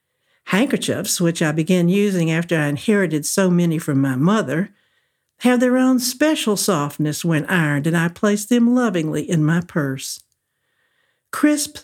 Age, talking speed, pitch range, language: 60-79, 145 wpm, 160-220 Hz, English